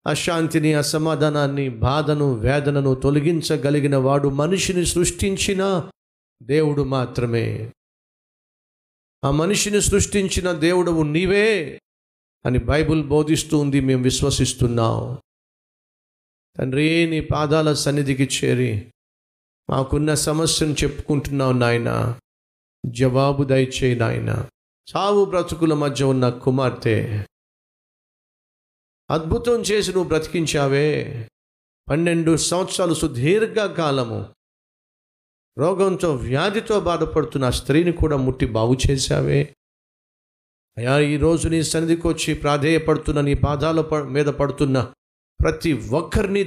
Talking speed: 55 wpm